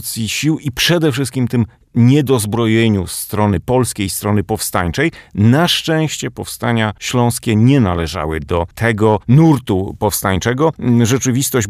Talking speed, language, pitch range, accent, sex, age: 110 wpm, Polish, 105-135 Hz, native, male, 40-59